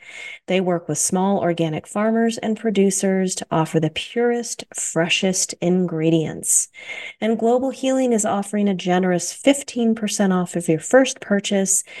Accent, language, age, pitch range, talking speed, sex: American, English, 30-49, 170-225 Hz, 135 wpm, female